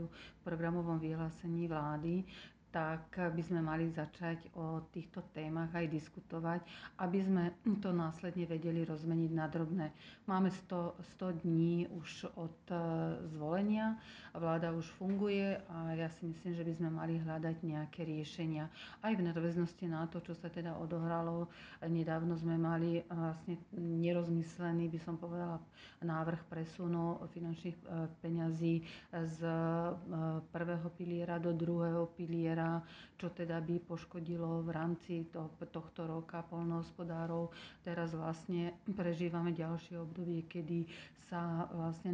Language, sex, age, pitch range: Slovak, female, 40-59, 165-175 Hz